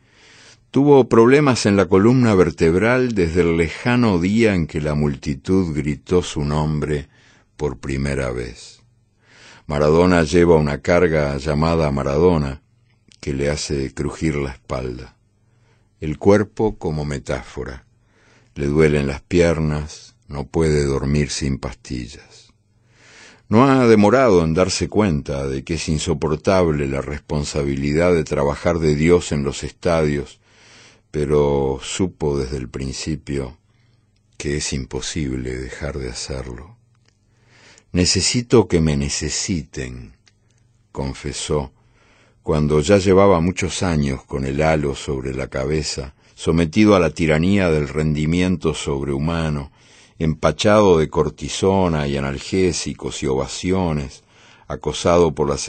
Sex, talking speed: male, 115 wpm